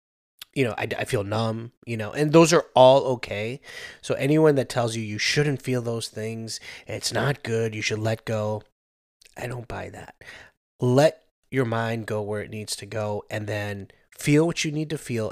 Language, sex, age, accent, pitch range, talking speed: English, male, 20-39, American, 110-130 Hz, 200 wpm